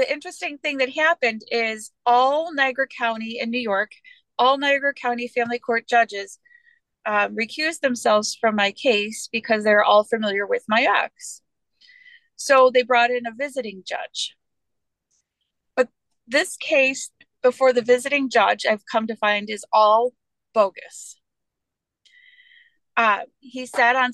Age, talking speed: 30-49, 140 wpm